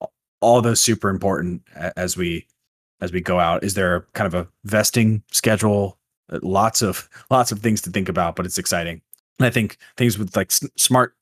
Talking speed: 185 wpm